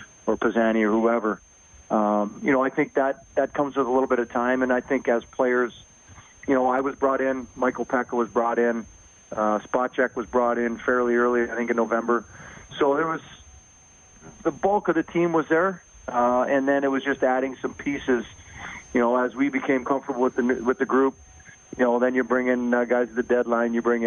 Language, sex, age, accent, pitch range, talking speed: English, male, 40-59, American, 115-130 Hz, 220 wpm